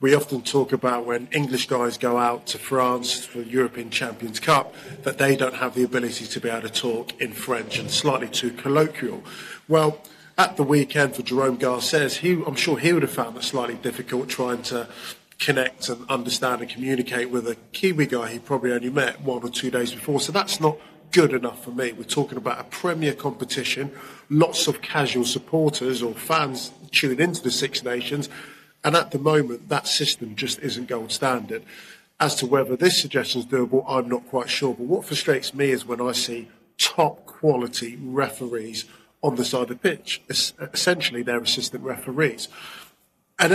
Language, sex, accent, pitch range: English, male, British, 125-145 Hz